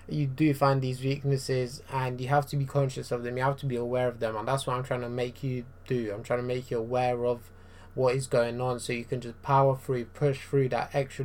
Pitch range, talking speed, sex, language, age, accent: 120-140 Hz, 265 wpm, male, English, 20-39, British